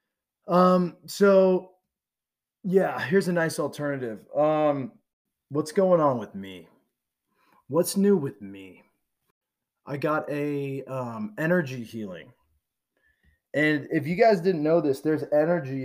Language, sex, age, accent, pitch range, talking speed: English, male, 20-39, American, 135-175 Hz, 120 wpm